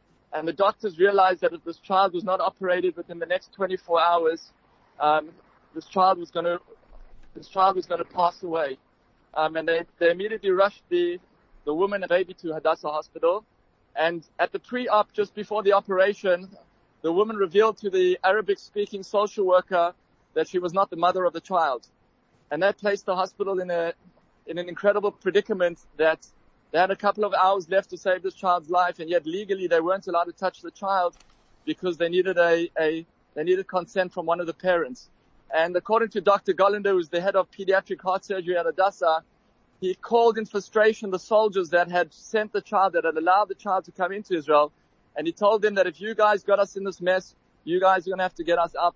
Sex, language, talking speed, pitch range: male, English, 215 wpm, 170-200 Hz